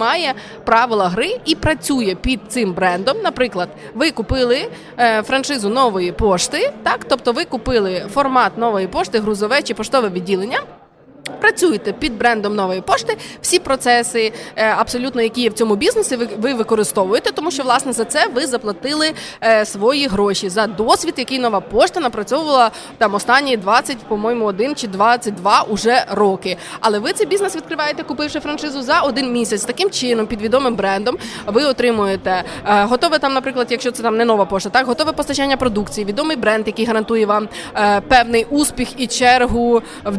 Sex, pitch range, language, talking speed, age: female, 215-275 Hz, Ukrainian, 155 wpm, 20-39